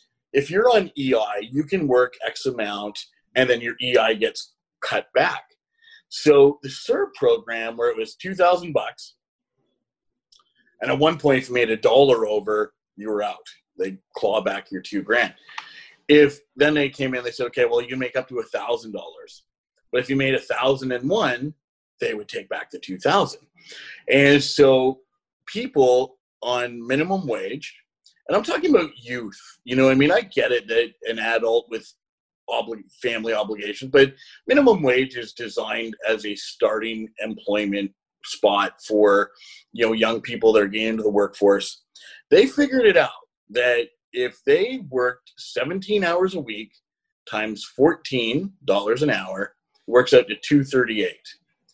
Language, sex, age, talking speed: English, male, 30-49, 160 wpm